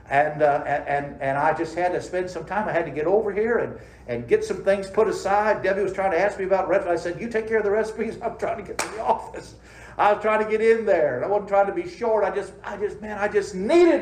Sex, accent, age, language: male, American, 60-79, English